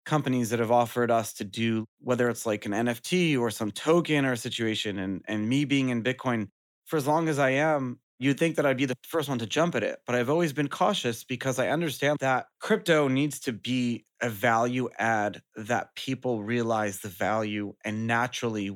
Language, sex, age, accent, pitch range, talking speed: English, male, 30-49, American, 115-145 Hz, 210 wpm